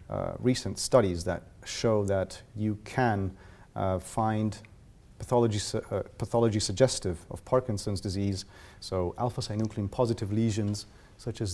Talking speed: 120 wpm